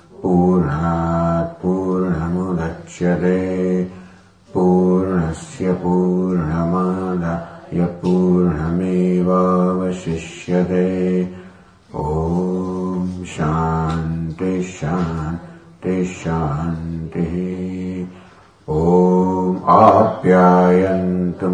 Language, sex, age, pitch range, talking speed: English, male, 60-79, 90-95 Hz, 45 wpm